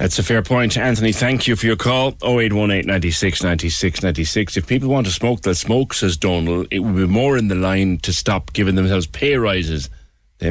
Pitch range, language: 85-115 Hz, English